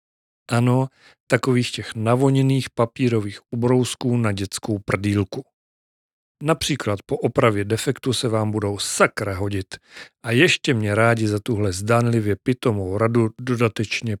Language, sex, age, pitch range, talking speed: Czech, male, 40-59, 110-135 Hz, 120 wpm